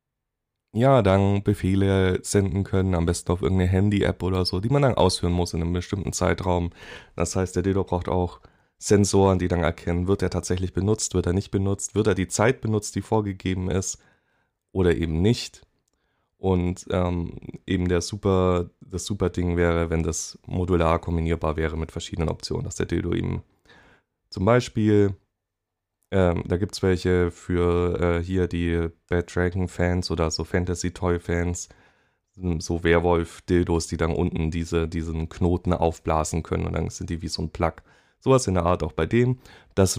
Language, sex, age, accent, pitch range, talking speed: German, male, 20-39, German, 85-100 Hz, 170 wpm